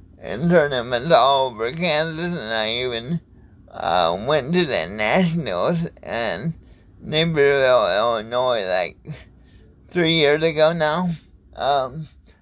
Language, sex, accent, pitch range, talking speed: English, male, American, 130-175 Hz, 105 wpm